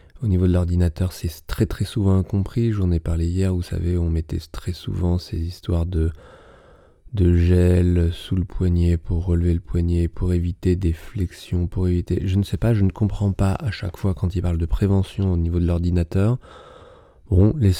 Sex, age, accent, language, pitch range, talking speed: male, 20-39, French, French, 85-105 Hz, 200 wpm